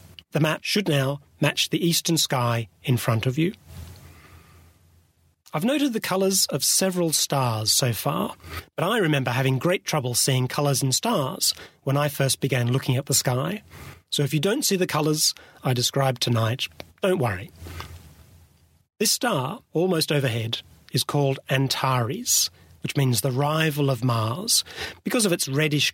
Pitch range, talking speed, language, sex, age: 110-160 Hz, 155 wpm, English, male, 40-59